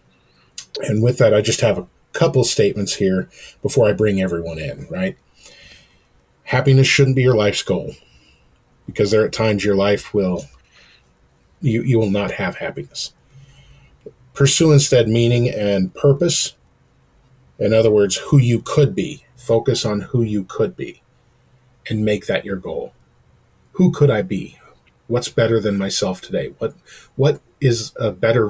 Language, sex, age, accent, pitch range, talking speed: English, male, 40-59, American, 95-130 Hz, 150 wpm